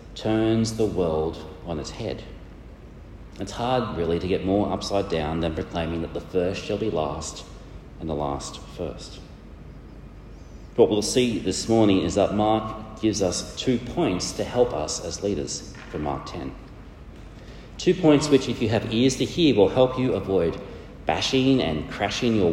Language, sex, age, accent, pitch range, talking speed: English, male, 40-59, Australian, 80-110 Hz, 170 wpm